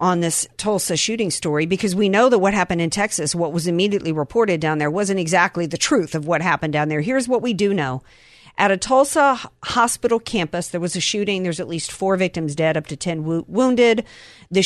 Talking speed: 215 wpm